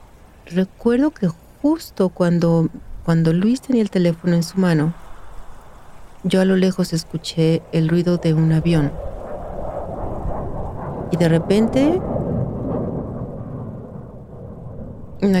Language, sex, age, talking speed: Spanish, female, 40-59, 100 wpm